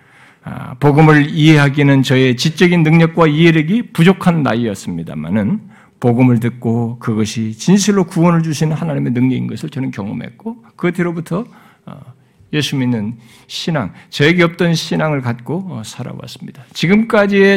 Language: Korean